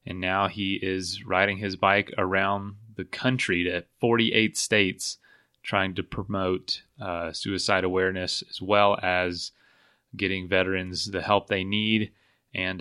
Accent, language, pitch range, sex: American, English, 95-120 Hz, male